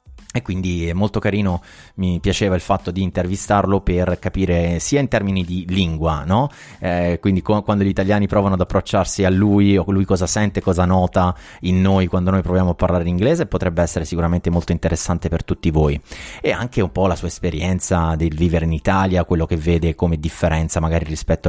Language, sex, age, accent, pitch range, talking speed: Italian, male, 30-49, native, 85-100 Hz, 195 wpm